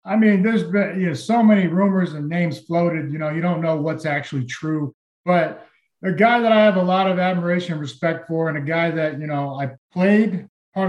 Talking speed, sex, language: 230 wpm, male, English